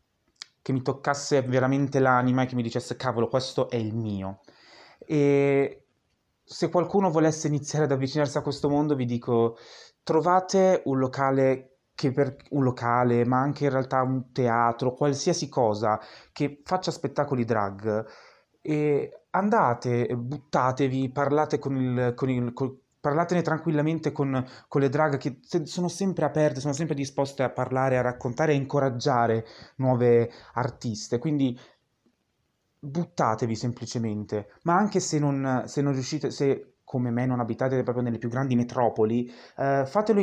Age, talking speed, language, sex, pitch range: 20-39, 140 wpm, Italian, male, 125-150 Hz